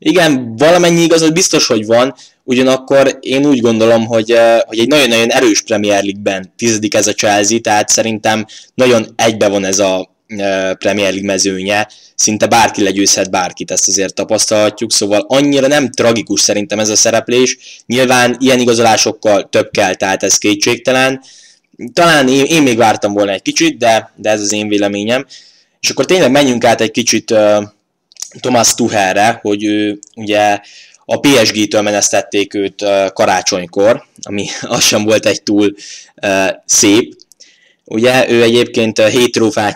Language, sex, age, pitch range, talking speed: Hungarian, male, 10-29, 105-125 Hz, 145 wpm